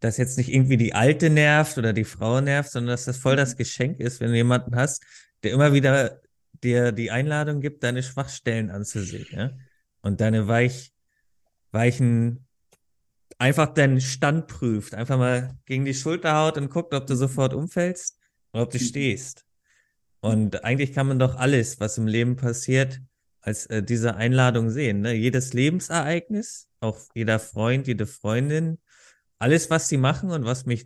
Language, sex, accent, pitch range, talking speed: German, male, German, 110-135 Hz, 170 wpm